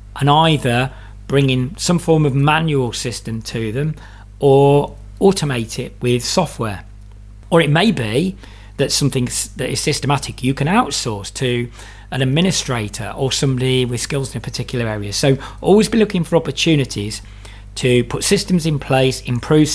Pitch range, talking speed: 105-145 Hz, 155 wpm